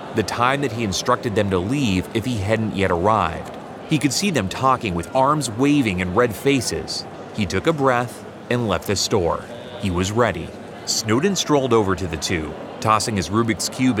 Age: 30-49